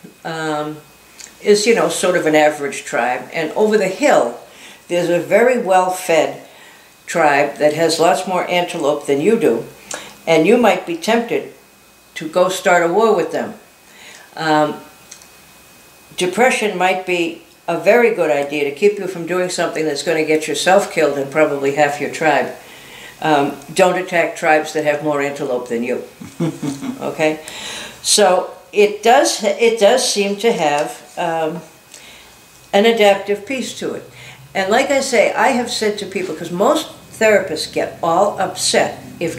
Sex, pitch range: female, 155-200 Hz